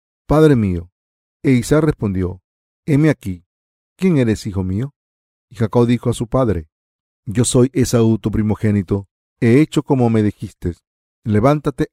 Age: 50-69